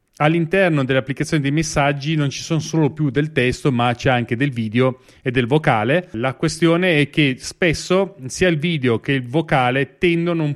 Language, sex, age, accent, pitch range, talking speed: Italian, male, 30-49, native, 125-155 Hz, 180 wpm